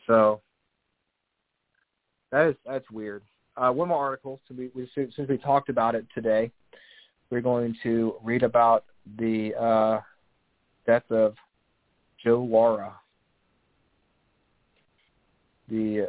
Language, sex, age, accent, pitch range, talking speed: English, male, 30-49, American, 110-125 Hz, 105 wpm